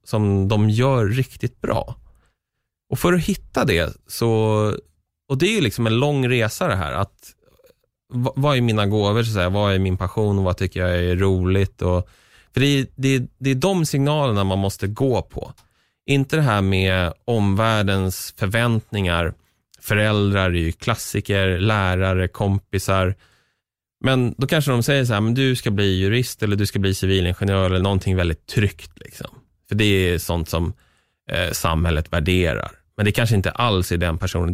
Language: Swedish